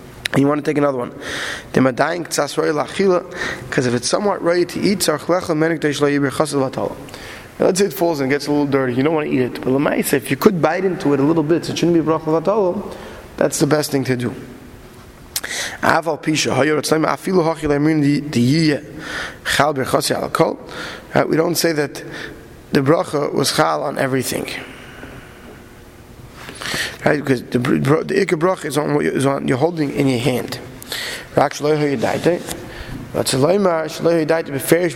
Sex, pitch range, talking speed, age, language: male, 135-165 Hz, 135 wpm, 20-39, English